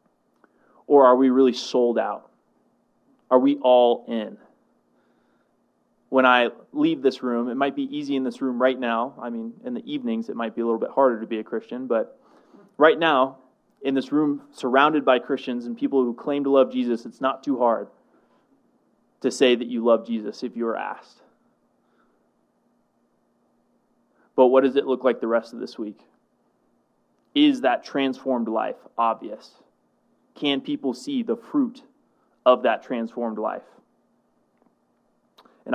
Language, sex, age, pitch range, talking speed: English, male, 20-39, 115-135 Hz, 160 wpm